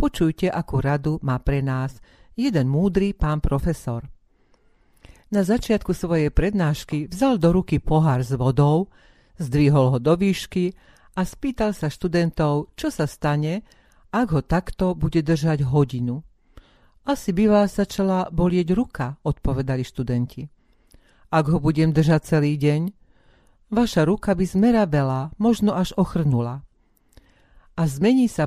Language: Slovak